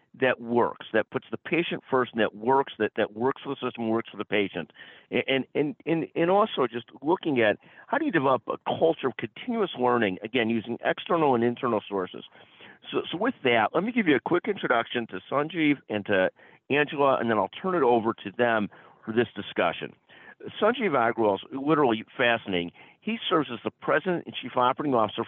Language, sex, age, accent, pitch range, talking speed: English, male, 50-69, American, 115-155 Hz, 200 wpm